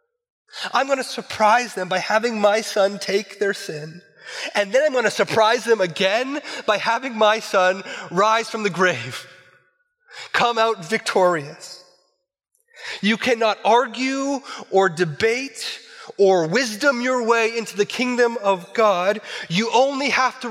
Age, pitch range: 30-49, 185-250 Hz